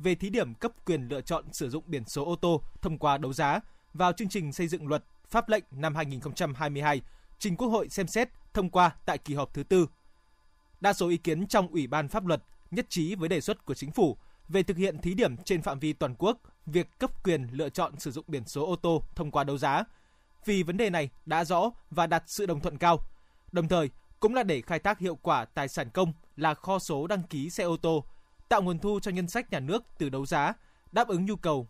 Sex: male